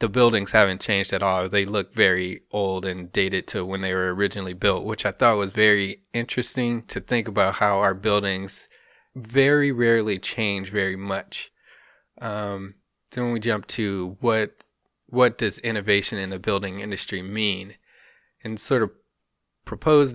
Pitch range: 100-115 Hz